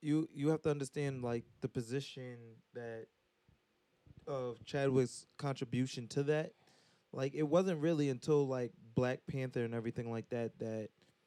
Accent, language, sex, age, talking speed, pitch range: American, English, male, 20-39, 150 wpm, 115-135 Hz